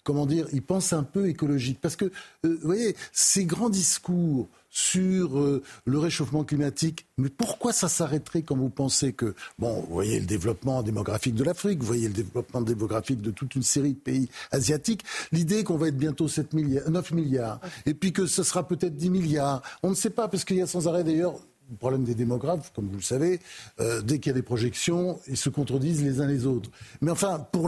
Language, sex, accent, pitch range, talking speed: French, male, French, 130-175 Hz, 220 wpm